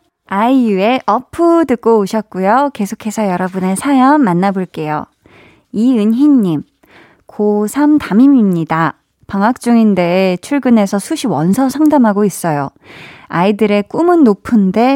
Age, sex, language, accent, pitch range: 20-39, female, Korean, native, 185-240 Hz